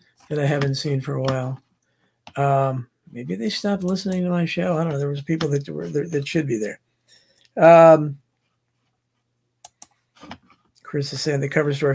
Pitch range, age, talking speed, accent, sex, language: 140-185 Hz, 50-69, 175 wpm, American, male, English